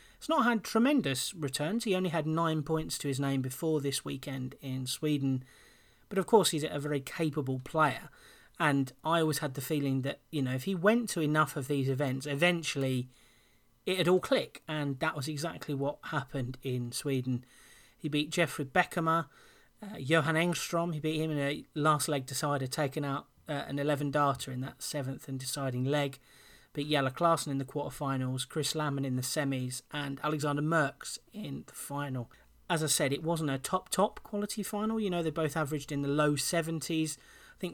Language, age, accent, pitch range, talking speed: English, 30-49, British, 140-165 Hz, 190 wpm